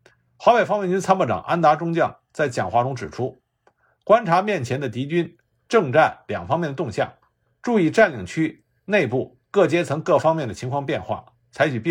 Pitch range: 120-175 Hz